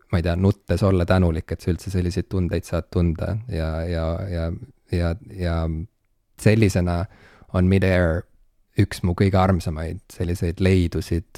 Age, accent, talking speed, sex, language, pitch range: 20-39, Finnish, 135 wpm, male, English, 85-105 Hz